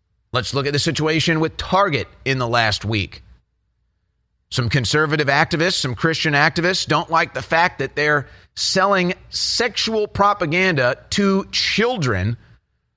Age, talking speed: 30-49, 130 wpm